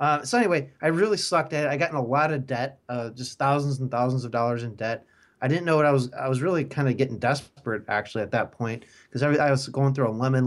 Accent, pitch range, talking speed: American, 120-145 Hz, 275 wpm